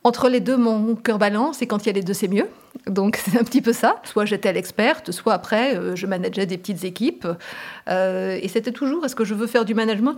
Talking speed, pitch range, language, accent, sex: 255 wpm, 195-230 Hz, French, French, female